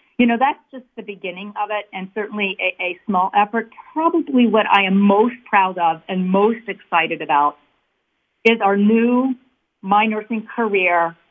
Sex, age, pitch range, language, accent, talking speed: female, 40-59, 185-225 Hz, English, American, 165 wpm